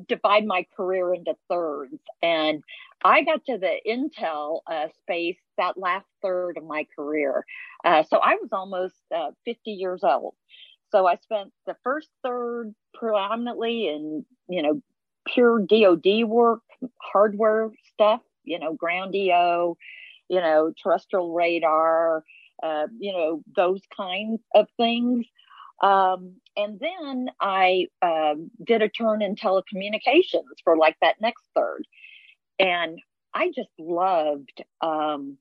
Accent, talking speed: American, 130 wpm